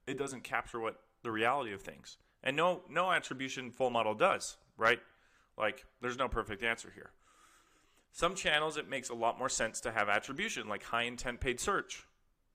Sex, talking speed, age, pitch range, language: male, 180 wpm, 30-49, 115-135 Hz, English